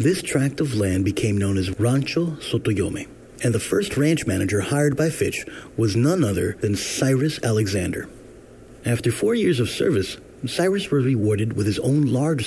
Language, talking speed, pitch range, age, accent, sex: English, 170 wpm, 105-140 Hz, 30-49, American, male